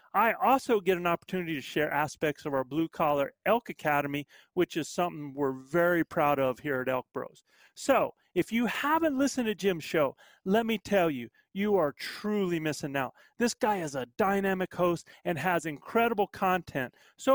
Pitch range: 150-210 Hz